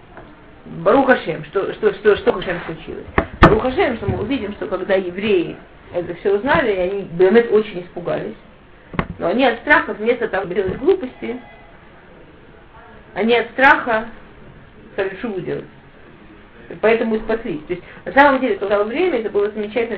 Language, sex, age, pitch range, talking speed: Russian, female, 40-59, 170-225 Hz, 140 wpm